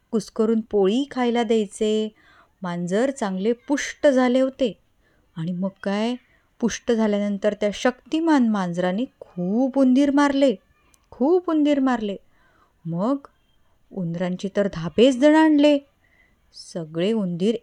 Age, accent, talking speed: 20-39, native, 100 wpm